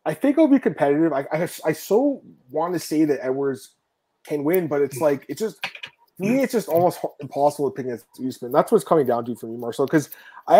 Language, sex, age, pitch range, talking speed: English, male, 20-39, 140-185 Hz, 230 wpm